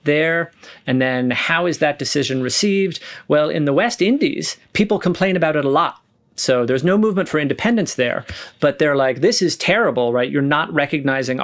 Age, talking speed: 40-59, 190 wpm